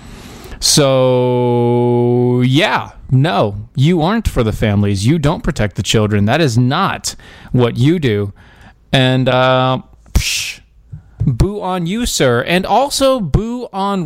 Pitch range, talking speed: 115-165 Hz, 125 wpm